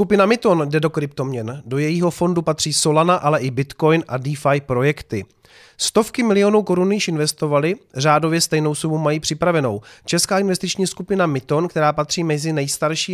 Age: 30-49